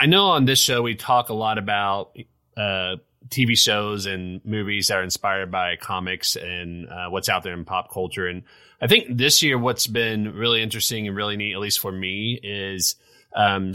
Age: 30-49